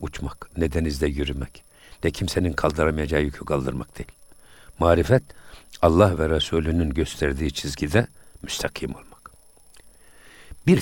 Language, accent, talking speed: Turkish, native, 105 wpm